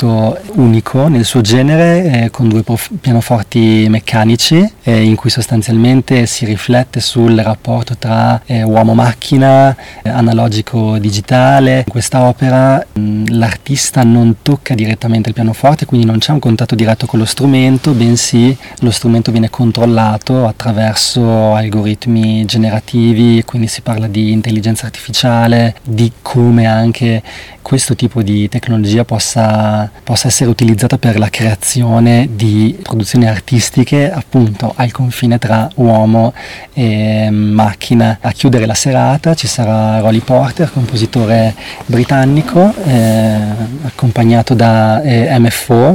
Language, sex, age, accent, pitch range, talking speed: Italian, male, 30-49, native, 110-125 Hz, 120 wpm